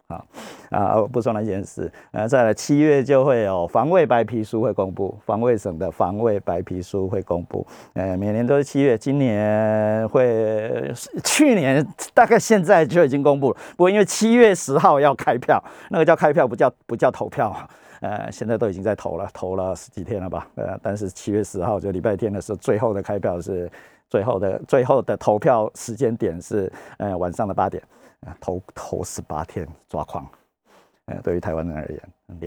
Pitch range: 90-120 Hz